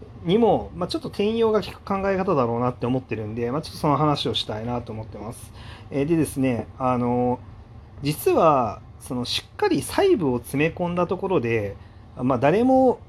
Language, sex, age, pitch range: Japanese, male, 30-49, 110-175 Hz